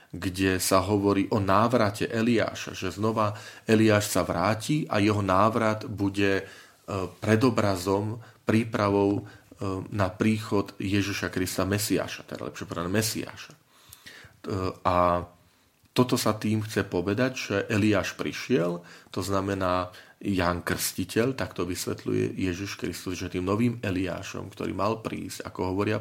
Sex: male